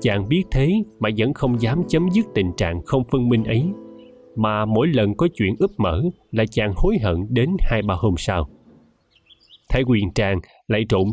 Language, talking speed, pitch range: Vietnamese, 195 wpm, 95-140 Hz